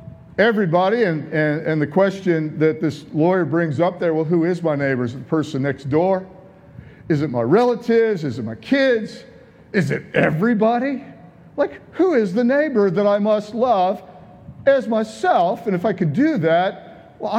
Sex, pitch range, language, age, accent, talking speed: male, 180-230 Hz, English, 50-69, American, 180 wpm